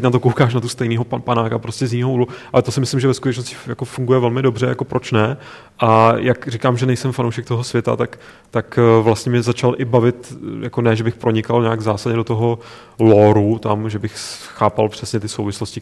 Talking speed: 215 wpm